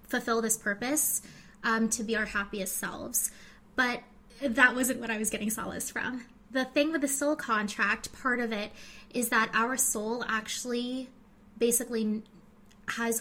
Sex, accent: female, American